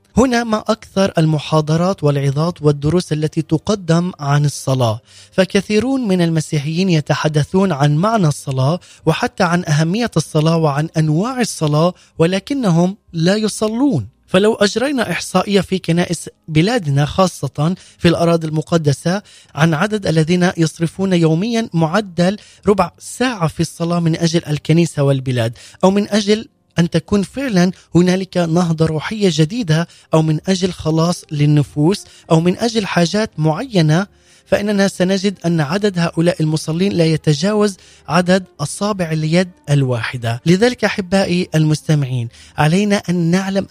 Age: 20-39